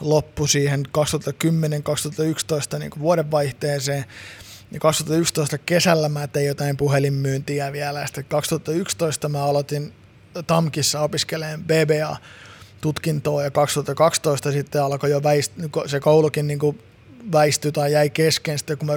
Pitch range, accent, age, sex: 140-160 Hz, native, 20-39, male